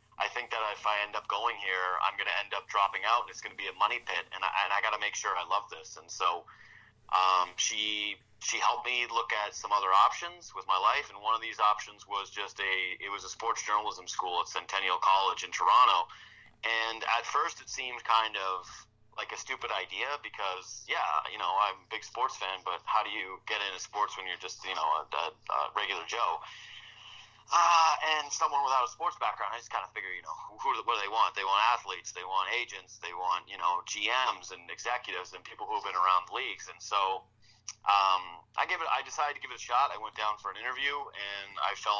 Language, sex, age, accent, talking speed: English, male, 30-49, American, 235 wpm